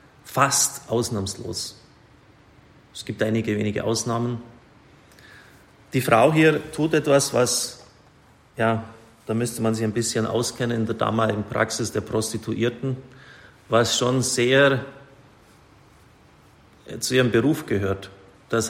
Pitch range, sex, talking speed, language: 105-120 Hz, male, 110 wpm, German